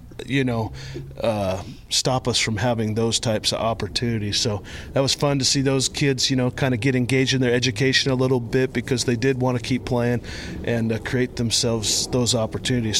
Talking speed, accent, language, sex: 205 wpm, American, English, male